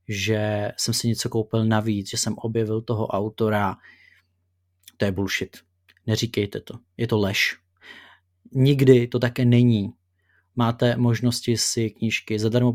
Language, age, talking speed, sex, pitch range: Czech, 30-49, 130 wpm, male, 105-120 Hz